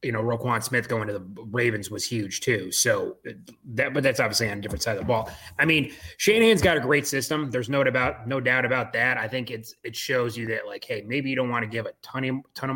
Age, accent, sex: 20-39, American, male